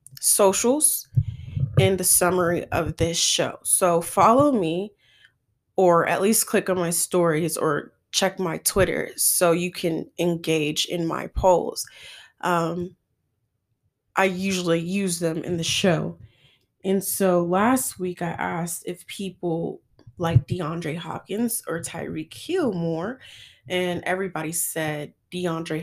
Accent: American